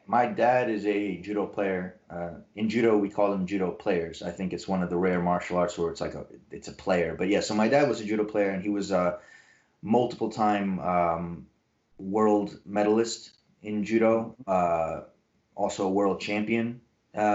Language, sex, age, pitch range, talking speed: English, male, 20-39, 100-110 Hz, 195 wpm